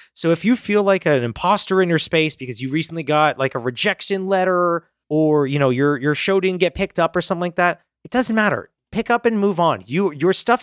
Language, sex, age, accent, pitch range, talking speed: English, male, 30-49, American, 145-195 Hz, 235 wpm